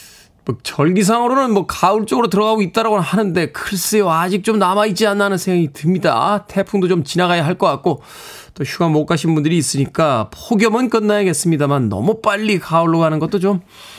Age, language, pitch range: 20-39, Korean, 140-200 Hz